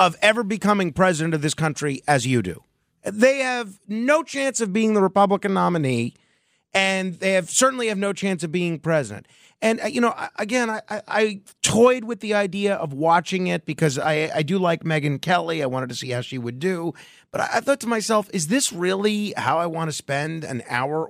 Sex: male